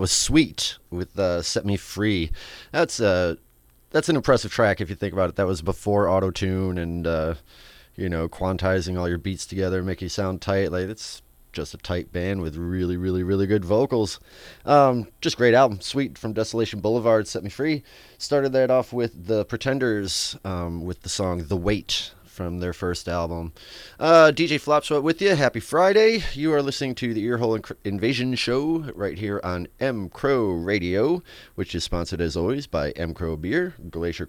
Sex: male